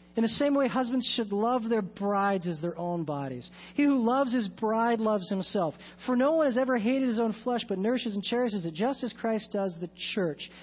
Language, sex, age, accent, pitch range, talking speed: English, male, 40-59, American, 175-245 Hz, 225 wpm